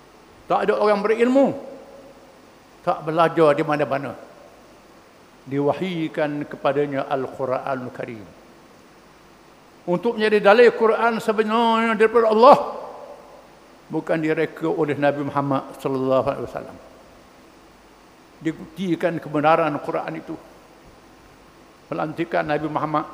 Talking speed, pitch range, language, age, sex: 85 wpm, 155-225 Hz, English, 50-69, male